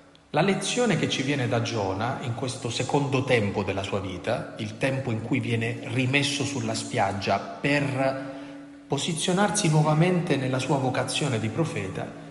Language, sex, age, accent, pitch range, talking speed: Italian, male, 40-59, native, 120-160 Hz, 145 wpm